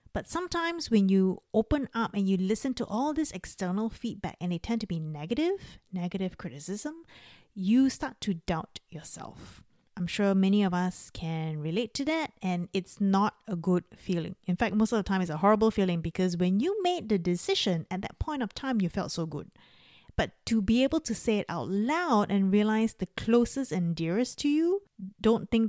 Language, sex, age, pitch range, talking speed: English, female, 30-49, 180-235 Hz, 200 wpm